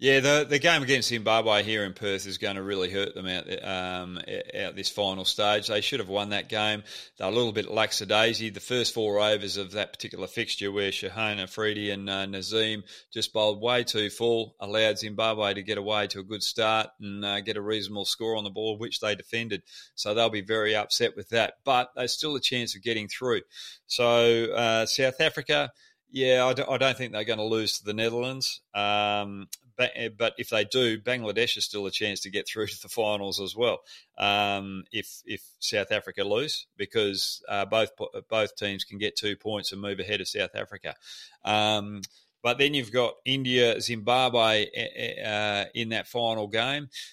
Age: 30-49